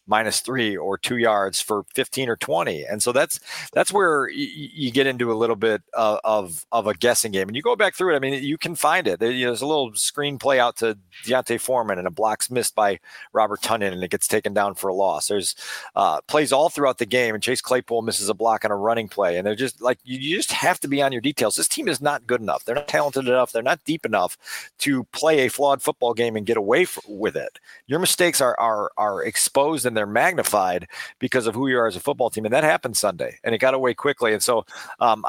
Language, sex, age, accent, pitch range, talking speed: English, male, 40-59, American, 110-135 Hz, 260 wpm